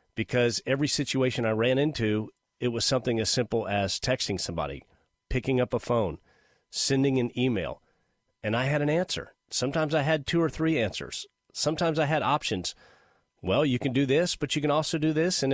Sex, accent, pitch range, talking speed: male, American, 110-140 Hz, 190 wpm